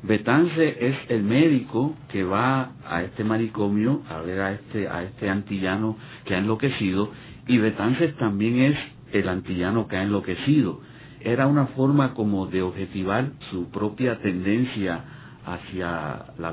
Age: 50-69